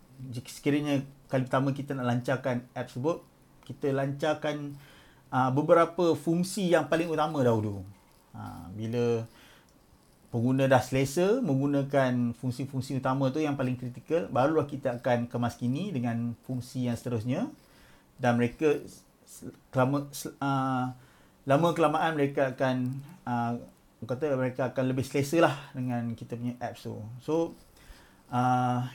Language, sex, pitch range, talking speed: Malay, male, 120-150 Hz, 120 wpm